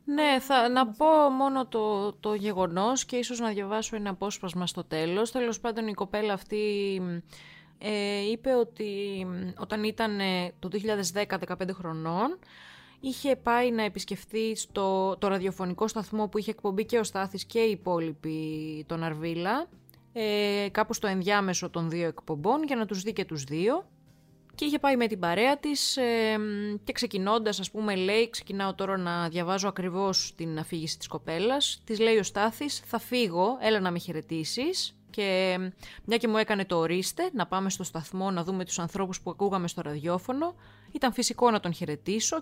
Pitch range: 180-230 Hz